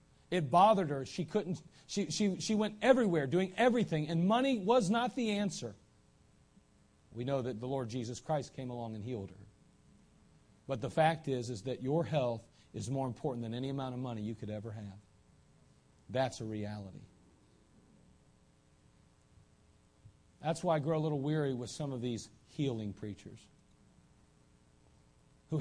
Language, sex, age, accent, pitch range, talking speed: English, male, 40-59, American, 115-160 Hz, 155 wpm